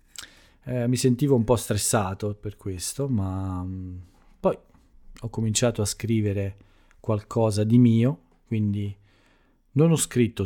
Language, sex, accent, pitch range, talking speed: Italian, male, native, 95-110 Hz, 120 wpm